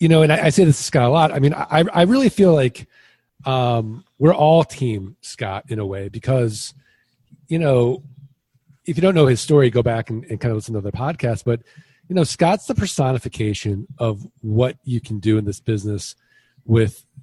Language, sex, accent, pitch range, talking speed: English, male, American, 115-145 Hz, 210 wpm